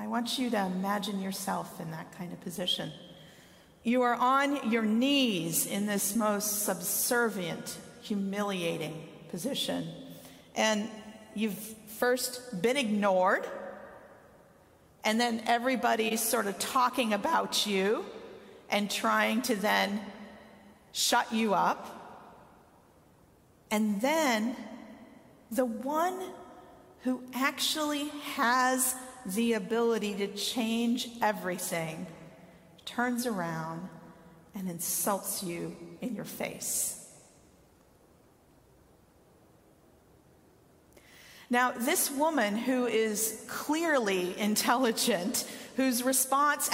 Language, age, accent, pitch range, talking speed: English, 40-59, American, 195-250 Hz, 90 wpm